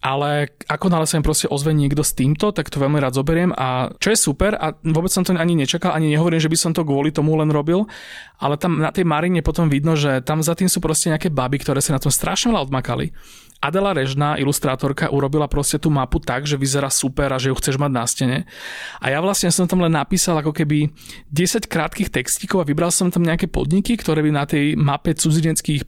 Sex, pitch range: male, 140-170 Hz